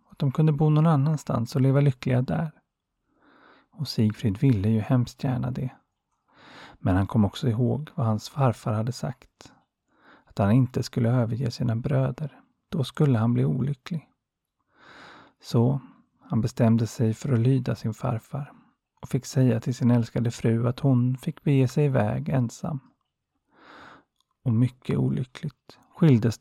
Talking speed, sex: 150 wpm, male